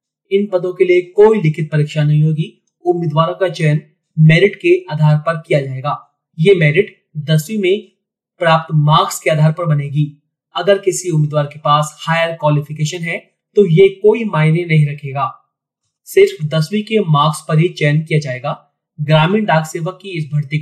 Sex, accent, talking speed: male, native, 80 wpm